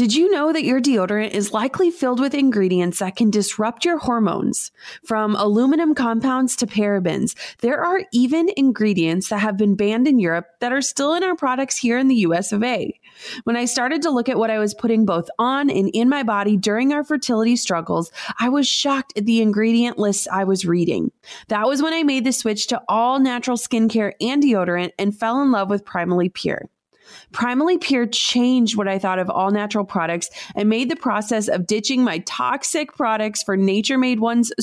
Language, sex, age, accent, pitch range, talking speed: English, female, 30-49, American, 205-260 Hz, 200 wpm